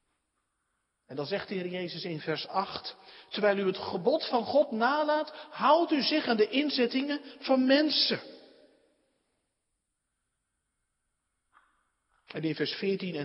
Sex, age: male, 50-69